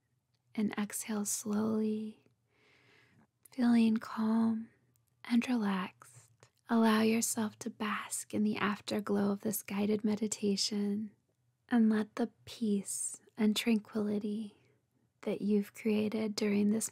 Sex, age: female, 20-39